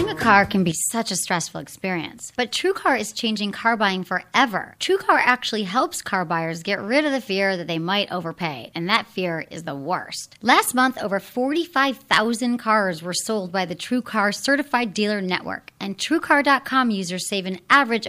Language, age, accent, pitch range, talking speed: English, 30-49, American, 190-270 Hz, 185 wpm